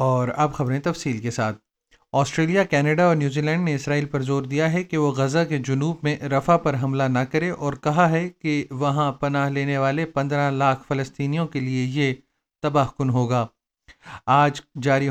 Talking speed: 185 wpm